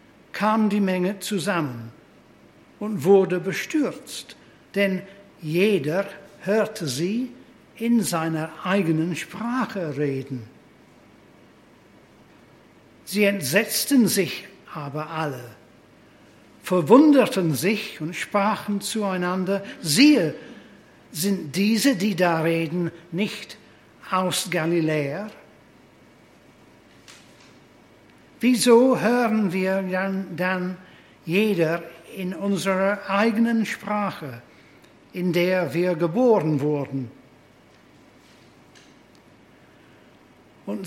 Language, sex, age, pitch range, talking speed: English, male, 60-79, 170-210 Hz, 75 wpm